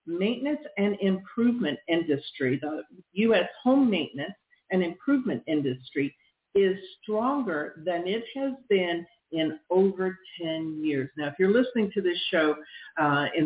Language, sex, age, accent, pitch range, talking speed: English, female, 50-69, American, 155-230 Hz, 135 wpm